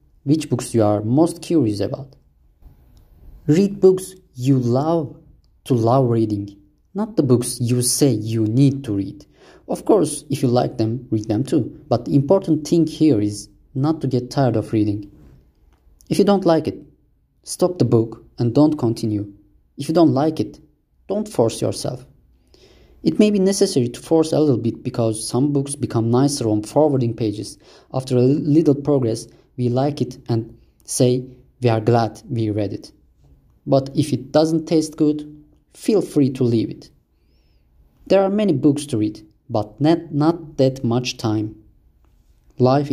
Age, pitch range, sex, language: 30-49, 110-150 Hz, male, English